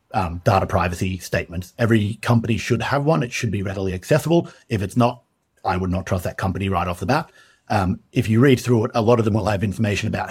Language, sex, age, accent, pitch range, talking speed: English, male, 50-69, Australian, 100-125 Hz, 240 wpm